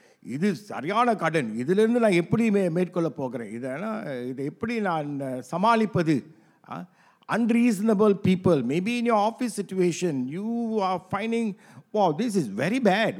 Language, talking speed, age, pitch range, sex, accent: English, 55 wpm, 50-69, 145-215 Hz, male, Indian